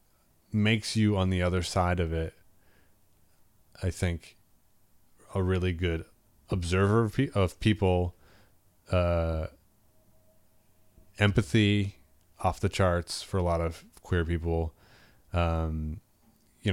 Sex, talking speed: male, 105 wpm